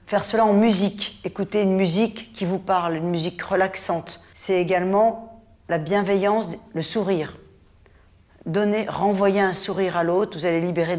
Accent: French